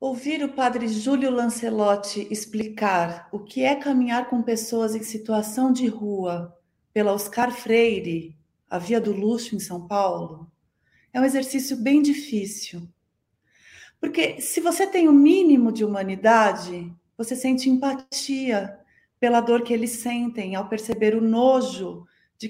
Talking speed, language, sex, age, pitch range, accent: 140 wpm, Portuguese, female, 30-49, 205-250 Hz, Brazilian